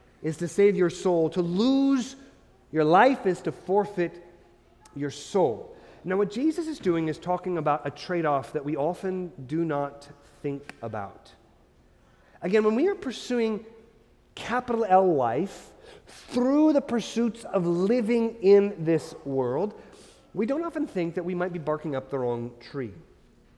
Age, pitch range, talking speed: 30-49, 160-265 Hz, 155 wpm